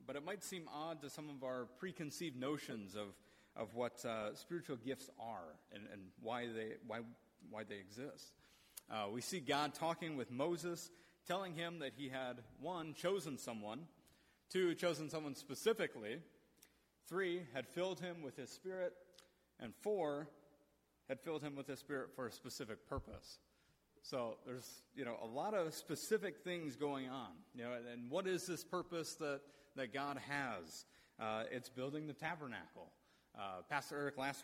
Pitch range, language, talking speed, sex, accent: 125-155 Hz, English, 165 wpm, male, American